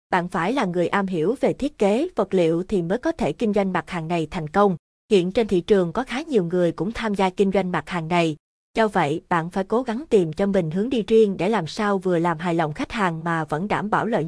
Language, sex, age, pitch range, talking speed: Vietnamese, female, 20-39, 175-225 Hz, 270 wpm